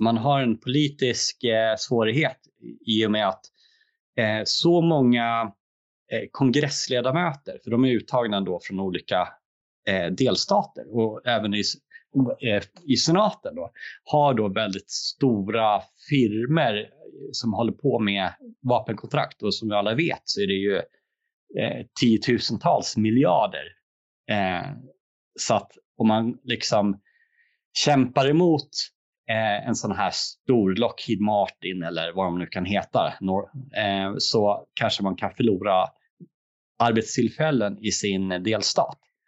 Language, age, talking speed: Swedish, 30-49, 125 wpm